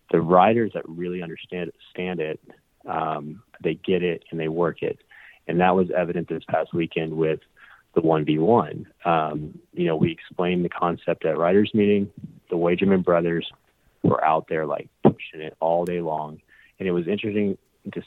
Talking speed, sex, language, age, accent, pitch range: 175 wpm, male, English, 20-39, American, 80-90 Hz